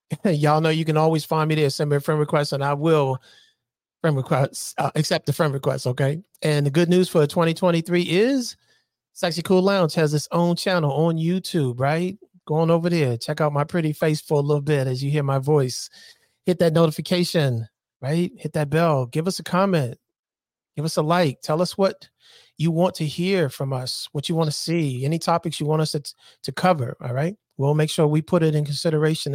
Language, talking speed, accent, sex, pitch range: English, 220 wpm, American, male, 140-175 Hz